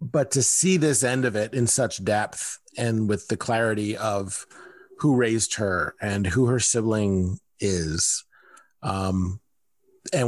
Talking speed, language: 145 wpm, English